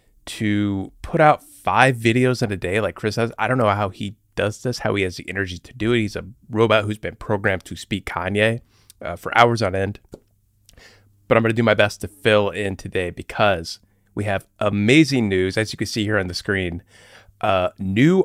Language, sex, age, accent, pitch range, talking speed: English, male, 30-49, American, 100-120 Hz, 215 wpm